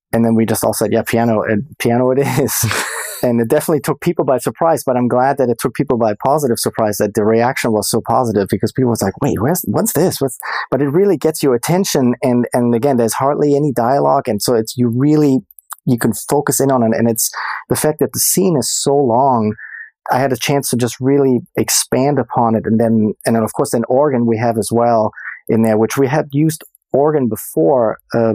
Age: 30-49